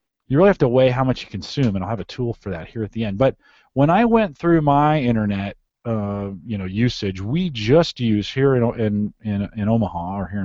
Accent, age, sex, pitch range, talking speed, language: American, 40-59, male, 100-125 Hz, 240 wpm, English